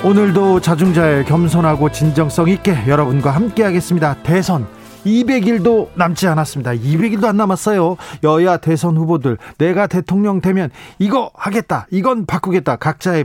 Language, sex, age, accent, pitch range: Korean, male, 40-59, native, 145-190 Hz